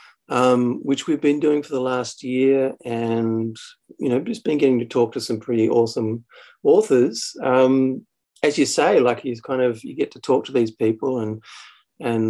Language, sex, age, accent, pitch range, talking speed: English, male, 40-59, Australian, 110-125 Hz, 190 wpm